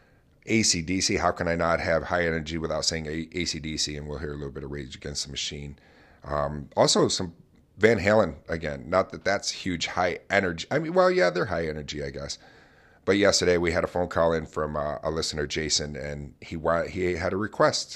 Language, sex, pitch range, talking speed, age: English, male, 75-95 Hz, 210 wpm, 40-59